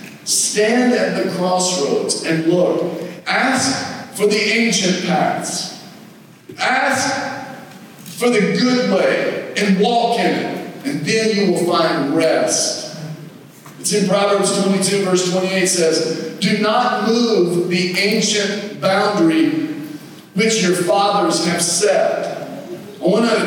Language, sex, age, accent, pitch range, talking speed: English, male, 50-69, American, 185-215 Hz, 120 wpm